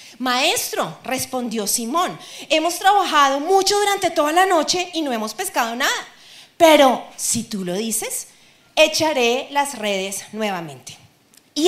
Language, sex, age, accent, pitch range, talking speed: Spanish, female, 30-49, Colombian, 210-325 Hz, 130 wpm